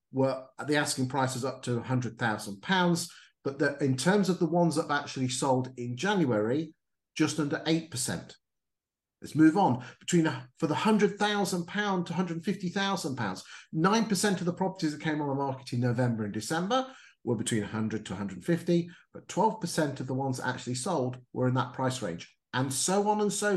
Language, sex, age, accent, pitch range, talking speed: English, male, 50-69, British, 135-190 Hz, 180 wpm